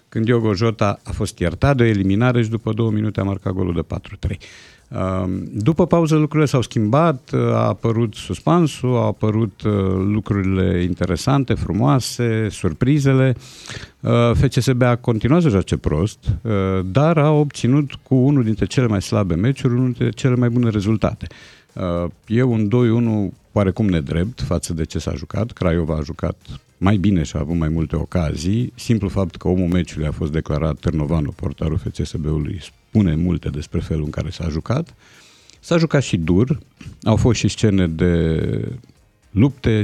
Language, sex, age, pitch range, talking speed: Romanian, male, 50-69, 90-120 Hz, 155 wpm